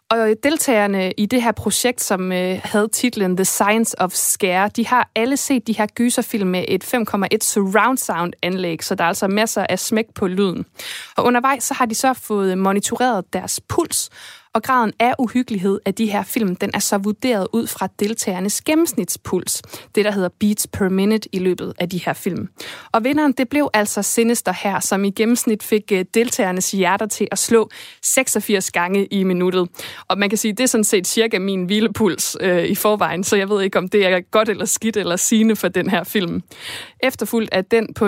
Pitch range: 190-225 Hz